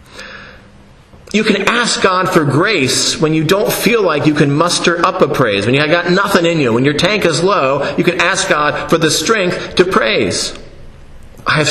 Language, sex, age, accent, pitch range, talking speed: English, male, 30-49, American, 130-170 Hz, 195 wpm